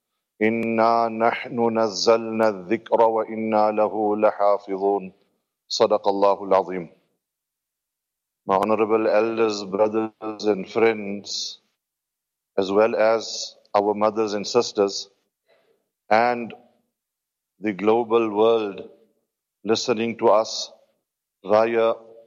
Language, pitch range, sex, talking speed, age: English, 110-115 Hz, male, 85 wpm, 40-59